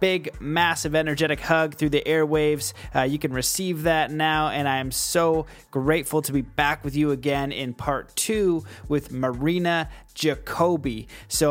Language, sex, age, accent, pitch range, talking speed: English, male, 30-49, American, 145-170 Hz, 160 wpm